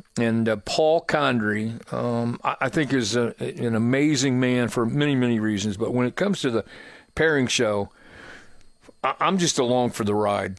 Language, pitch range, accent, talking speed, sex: English, 110-135 Hz, American, 180 wpm, male